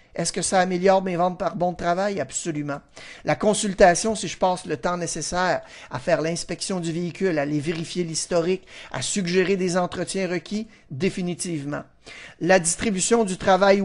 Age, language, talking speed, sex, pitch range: 60-79, French, 165 wpm, male, 165-200 Hz